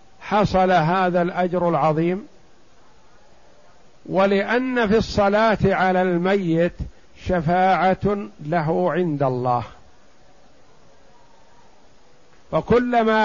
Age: 50-69